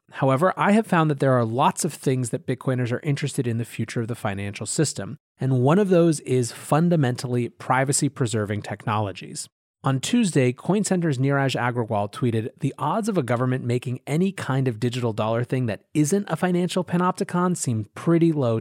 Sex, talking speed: male, 175 wpm